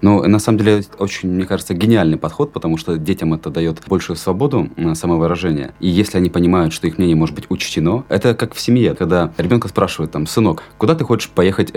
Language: Russian